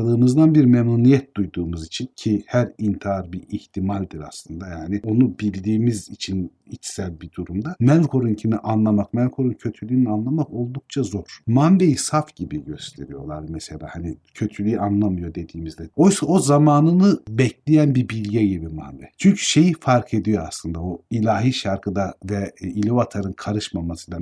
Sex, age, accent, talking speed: male, 50-69, native, 135 wpm